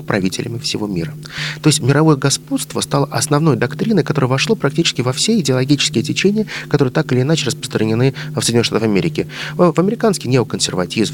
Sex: male